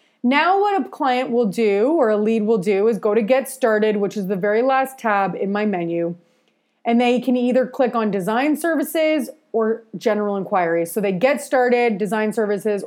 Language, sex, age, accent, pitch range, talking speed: English, female, 30-49, American, 200-255 Hz, 195 wpm